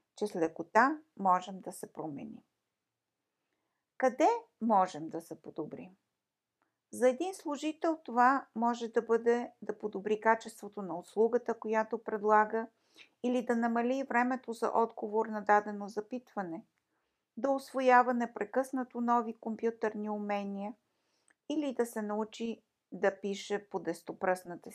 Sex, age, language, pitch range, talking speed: female, 50-69, Bulgarian, 210-250 Hz, 120 wpm